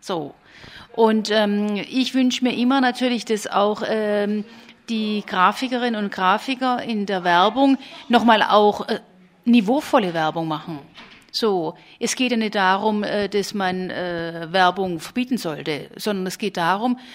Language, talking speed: German, 145 wpm